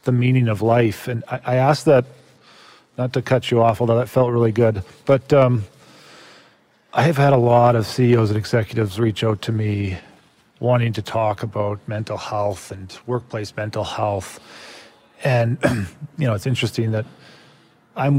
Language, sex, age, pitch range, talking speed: English, male, 40-59, 110-125 Hz, 170 wpm